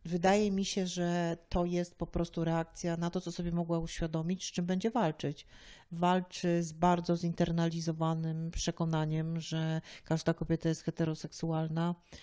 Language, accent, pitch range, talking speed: Polish, native, 160-175 Hz, 140 wpm